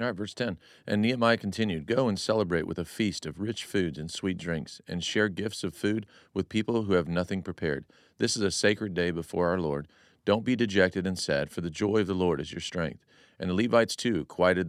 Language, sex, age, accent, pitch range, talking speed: English, male, 40-59, American, 90-105 Hz, 225 wpm